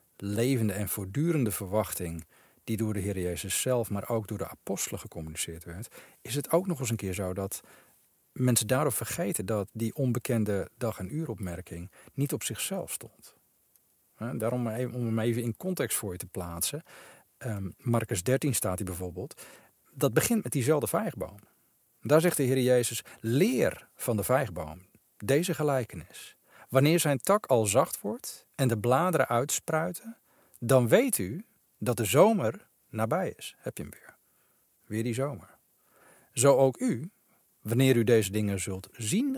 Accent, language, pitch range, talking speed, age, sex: Dutch, Dutch, 100-140 Hz, 160 wpm, 40-59, male